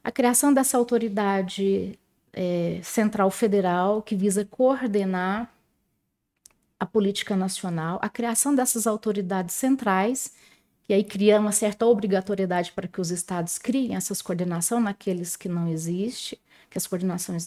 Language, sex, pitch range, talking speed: Portuguese, female, 200-250 Hz, 130 wpm